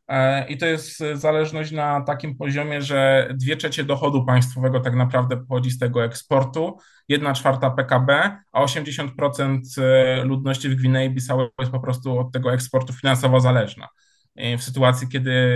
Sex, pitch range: male, 130-150 Hz